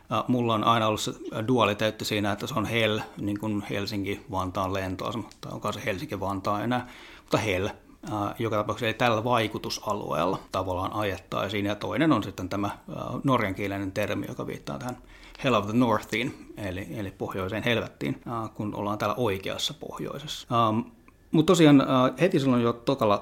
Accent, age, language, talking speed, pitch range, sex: native, 30-49, Finnish, 150 wpm, 100-125 Hz, male